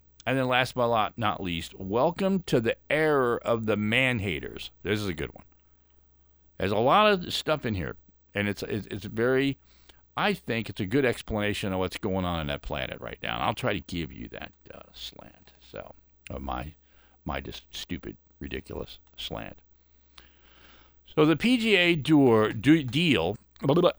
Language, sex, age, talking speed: English, male, 50-69, 185 wpm